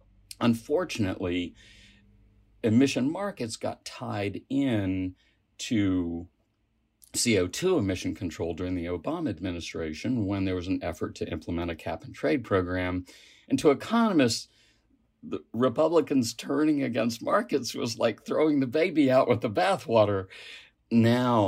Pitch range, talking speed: 90-115 Hz, 125 wpm